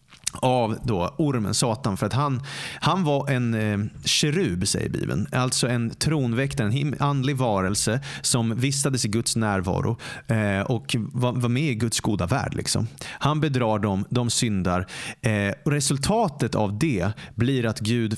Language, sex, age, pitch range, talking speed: English, male, 30-49, 105-130 Hz, 130 wpm